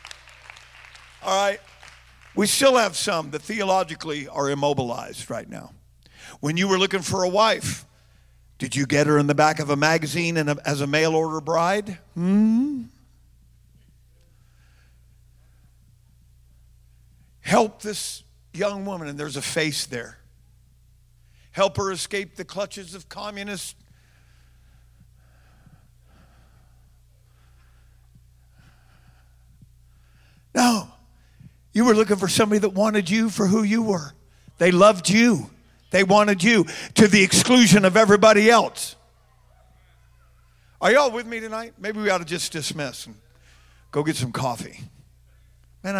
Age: 50-69